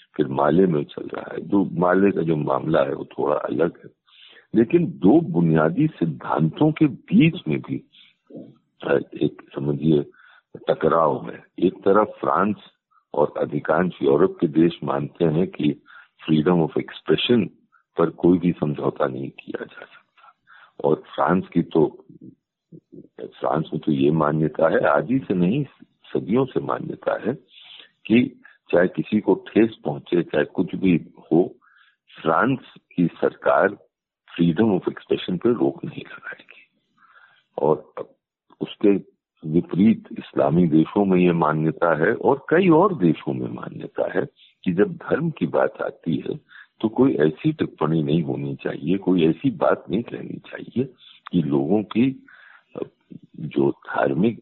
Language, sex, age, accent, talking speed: Hindi, male, 50-69, native, 140 wpm